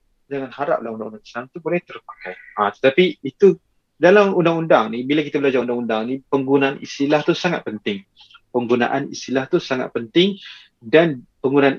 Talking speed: 150 wpm